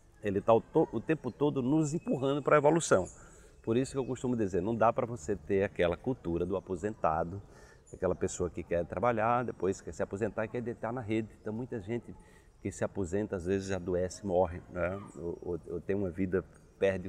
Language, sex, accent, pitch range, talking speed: Portuguese, male, Brazilian, 95-130 Hz, 205 wpm